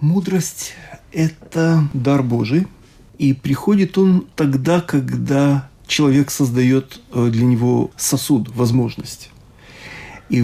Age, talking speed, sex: 40-59, 90 wpm, male